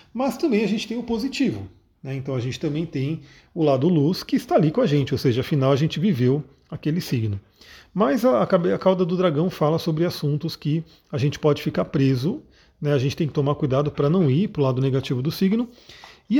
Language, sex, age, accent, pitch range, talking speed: Portuguese, male, 40-59, Brazilian, 145-195 Hz, 225 wpm